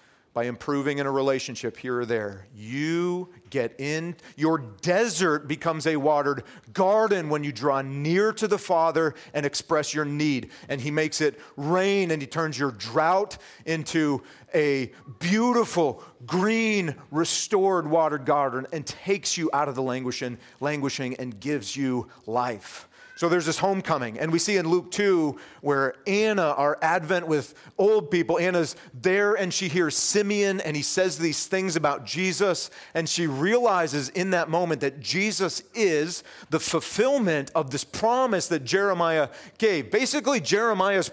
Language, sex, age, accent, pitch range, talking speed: English, male, 40-59, American, 145-185 Hz, 155 wpm